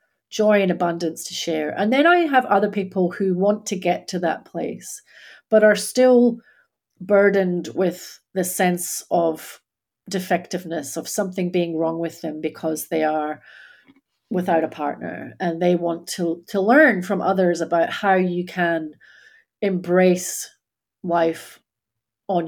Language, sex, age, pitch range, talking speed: English, female, 40-59, 170-210 Hz, 145 wpm